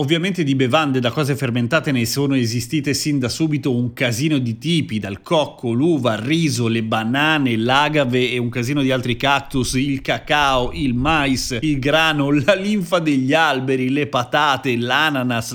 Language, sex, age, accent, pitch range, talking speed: Italian, male, 30-49, native, 125-155 Hz, 165 wpm